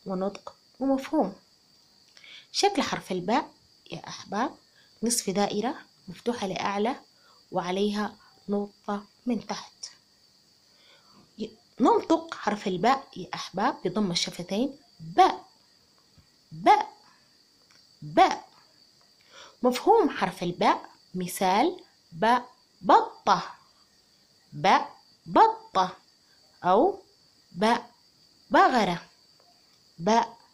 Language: Arabic